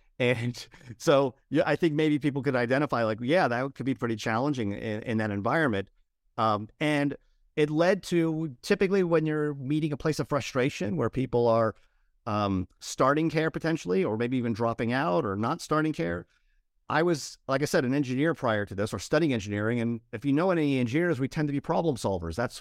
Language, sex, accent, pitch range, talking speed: English, male, American, 110-145 Hz, 200 wpm